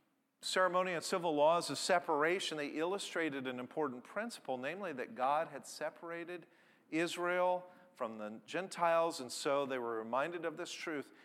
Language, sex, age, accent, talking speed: English, male, 40-59, American, 150 wpm